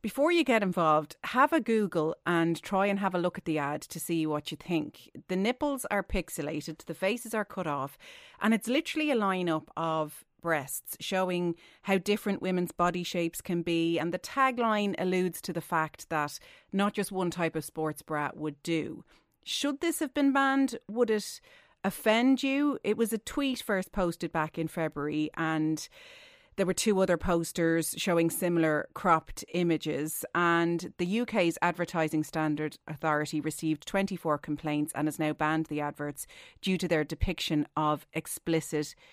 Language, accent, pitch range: English, Irish, 160-220 Hz